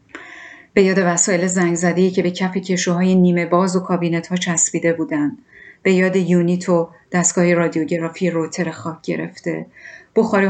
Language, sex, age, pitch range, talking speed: Persian, female, 30-49, 170-190 Hz, 135 wpm